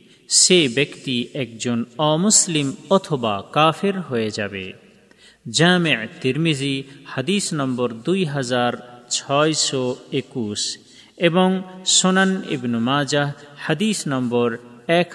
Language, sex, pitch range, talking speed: Bengali, male, 125-180 Hz, 90 wpm